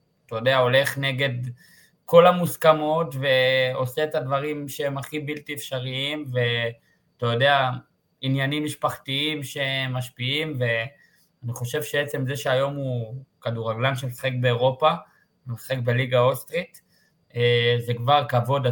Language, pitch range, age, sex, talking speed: Hebrew, 120-150 Hz, 20-39, male, 110 wpm